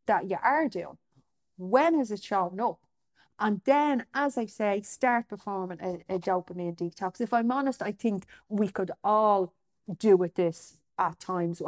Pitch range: 190-270 Hz